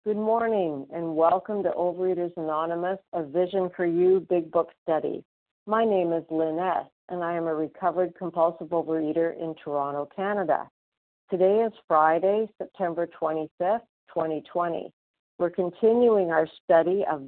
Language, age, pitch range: English, 50-69, 165-195 Hz